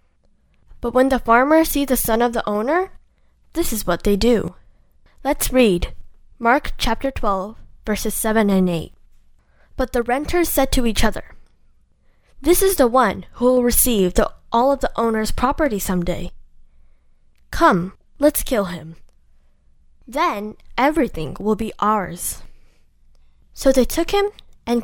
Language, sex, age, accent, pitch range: Korean, female, 10-29, American, 170-260 Hz